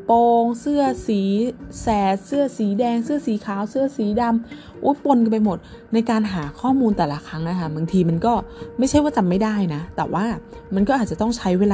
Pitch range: 165-230 Hz